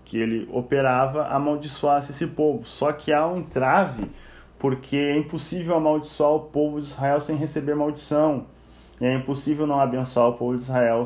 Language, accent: Portuguese, Brazilian